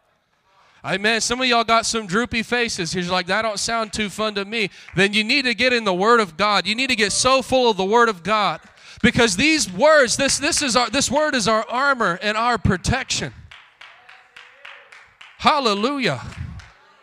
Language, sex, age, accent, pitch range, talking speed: English, male, 30-49, American, 180-230 Hz, 180 wpm